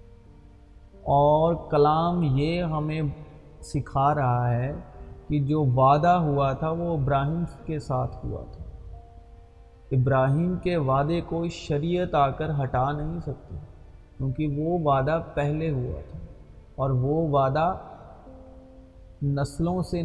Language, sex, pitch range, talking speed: Urdu, male, 130-160 Hz, 115 wpm